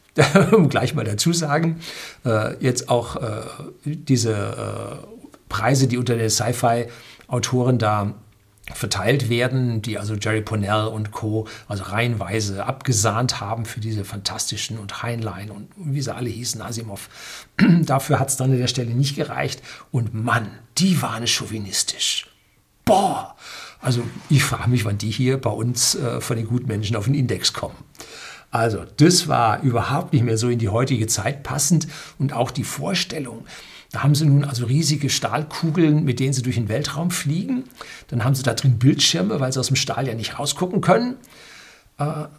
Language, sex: German, male